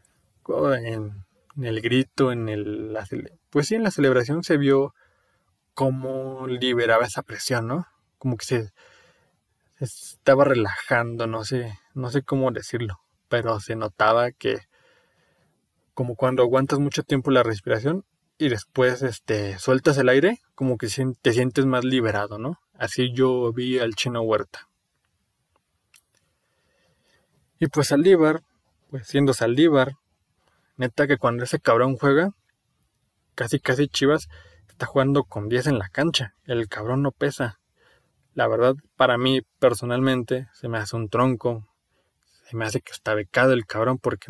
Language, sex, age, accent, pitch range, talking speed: Spanish, male, 20-39, Mexican, 115-140 Hz, 140 wpm